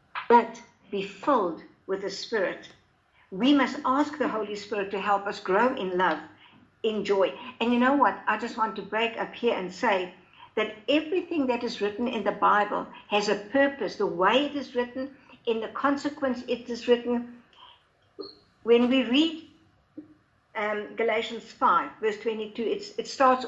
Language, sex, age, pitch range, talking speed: English, female, 60-79, 205-260 Hz, 170 wpm